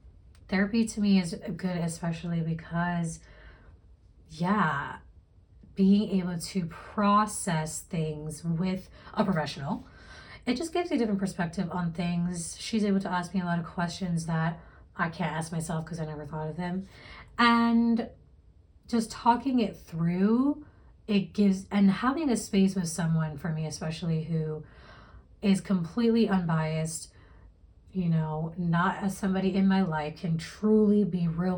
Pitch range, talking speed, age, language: 155-200 Hz, 145 wpm, 30-49, English